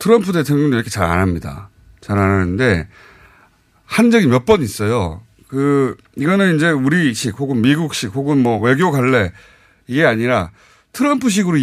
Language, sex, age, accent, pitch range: Korean, male, 30-49, native, 110-170 Hz